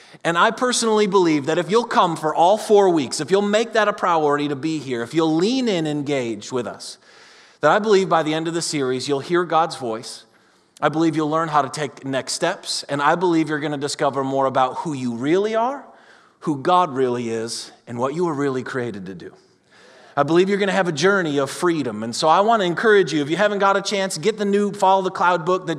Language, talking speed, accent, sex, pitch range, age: English, 250 wpm, American, male, 150-195 Hz, 30-49